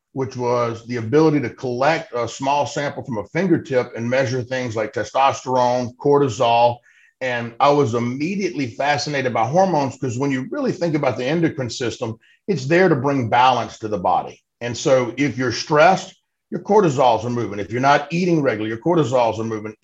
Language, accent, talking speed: English, American, 180 wpm